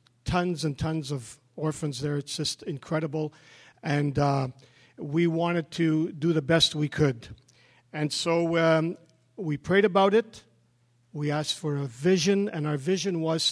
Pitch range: 150-175 Hz